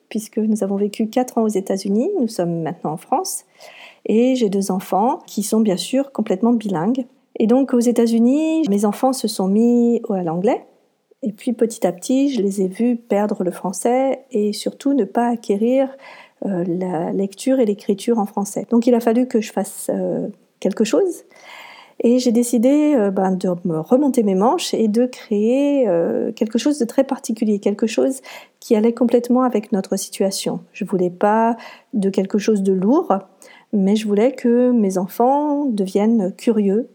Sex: female